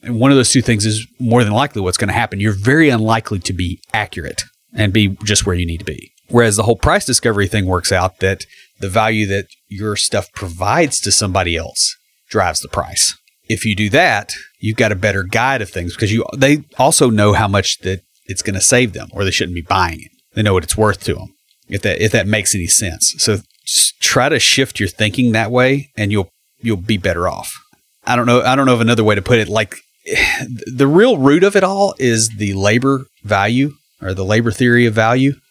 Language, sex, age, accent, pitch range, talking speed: English, male, 30-49, American, 100-120 Hz, 230 wpm